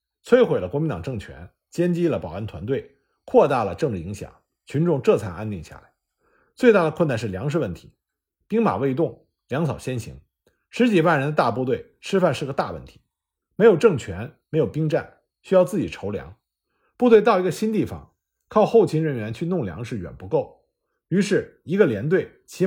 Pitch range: 115-185 Hz